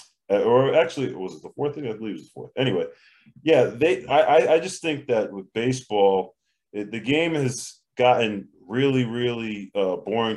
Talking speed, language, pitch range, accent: 185 wpm, English, 100-125 Hz, American